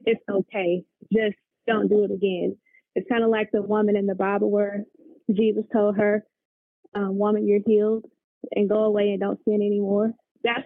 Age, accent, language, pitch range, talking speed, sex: 20-39, American, English, 205-230 Hz, 180 wpm, female